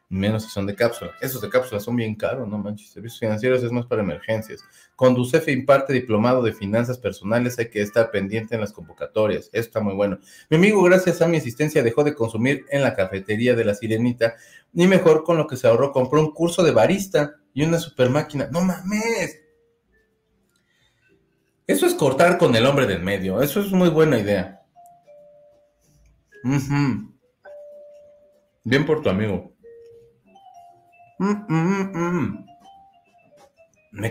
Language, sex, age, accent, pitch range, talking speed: Spanish, male, 40-59, Mexican, 115-180 Hz, 160 wpm